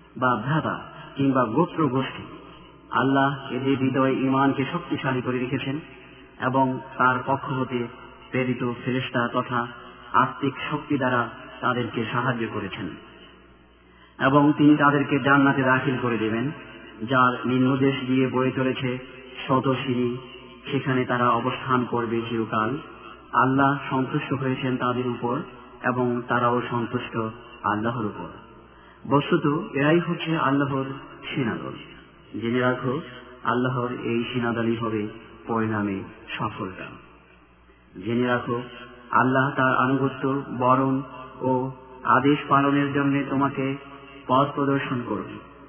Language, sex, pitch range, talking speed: Bengali, male, 120-140 Hz, 80 wpm